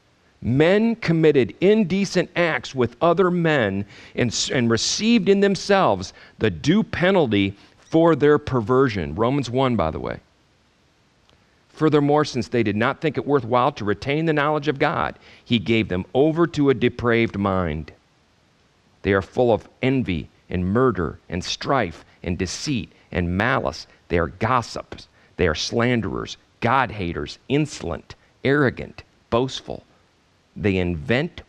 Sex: male